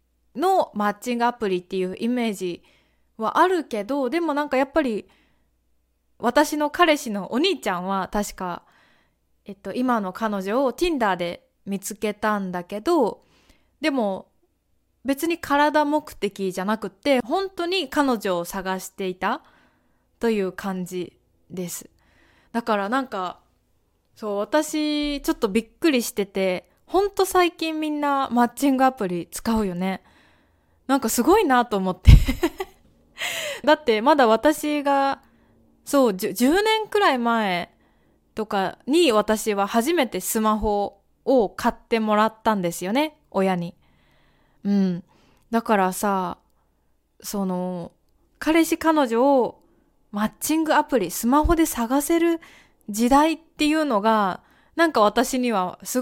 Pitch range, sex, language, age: 195-295 Hz, female, Japanese, 20-39